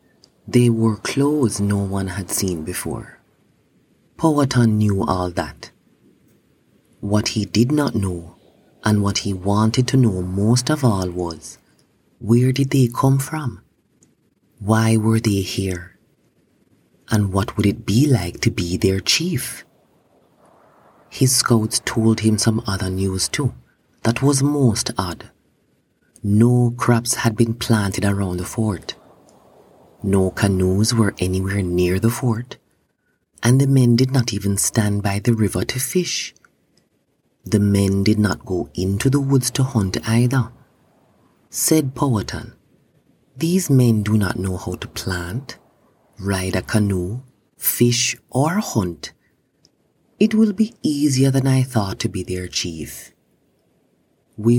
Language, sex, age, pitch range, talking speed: English, male, 30-49, 95-125 Hz, 135 wpm